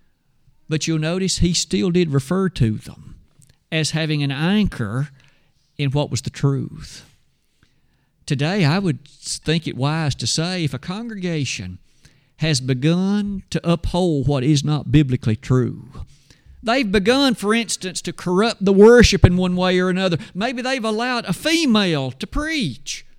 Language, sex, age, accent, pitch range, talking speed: English, male, 50-69, American, 140-185 Hz, 150 wpm